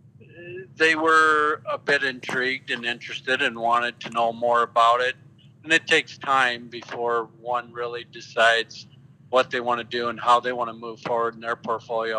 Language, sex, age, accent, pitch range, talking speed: English, male, 50-69, American, 120-135 Hz, 180 wpm